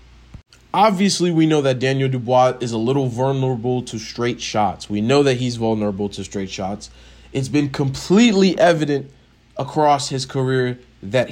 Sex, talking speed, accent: male, 155 wpm, American